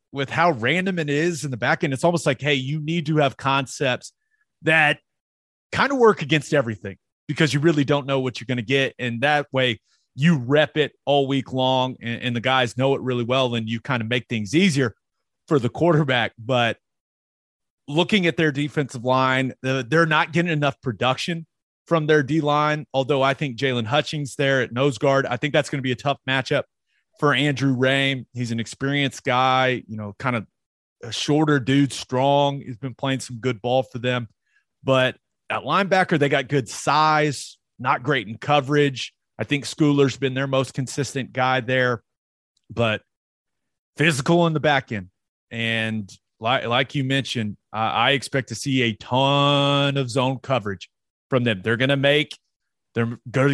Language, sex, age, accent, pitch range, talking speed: English, male, 30-49, American, 125-150 Hz, 185 wpm